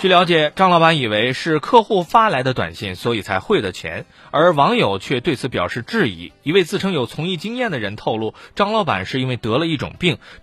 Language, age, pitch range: Chinese, 20-39, 120-200 Hz